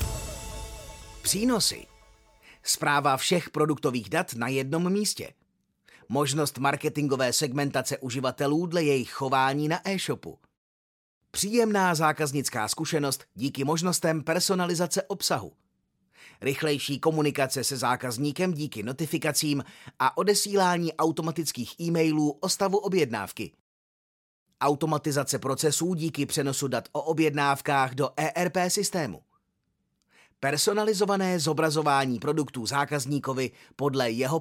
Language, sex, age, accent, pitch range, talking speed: Czech, male, 30-49, native, 135-180 Hz, 90 wpm